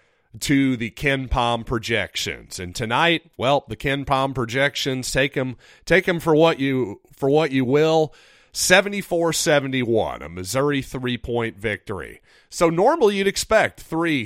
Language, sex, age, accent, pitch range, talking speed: English, male, 40-59, American, 110-150 Hz, 155 wpm